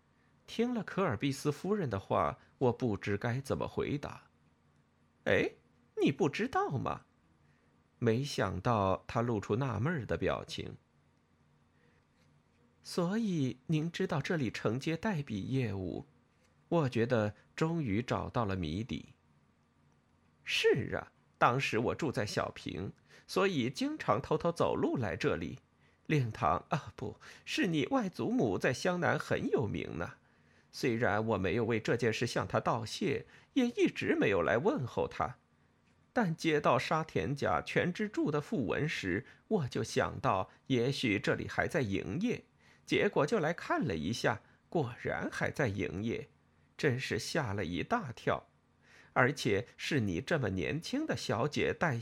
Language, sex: Chinese, male